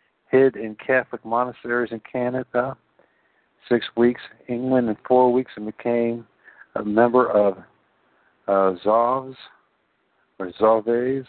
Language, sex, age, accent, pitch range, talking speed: English, male, 50-69, American, 105-125 Hz, 110 wpm